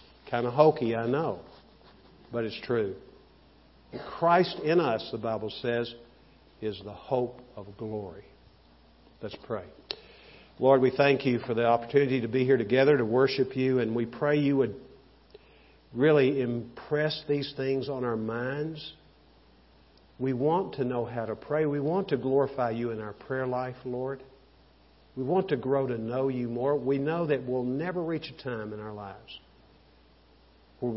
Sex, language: male, English